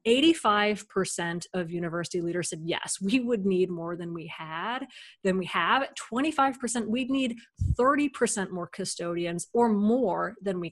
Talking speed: 145 wpm